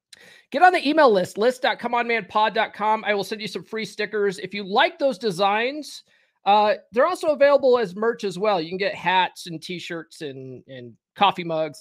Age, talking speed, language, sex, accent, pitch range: 30-49, 185 wpm, English, male, American, 175-240 Hz